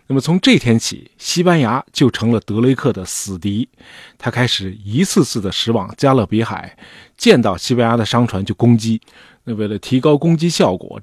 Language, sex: Chinese, male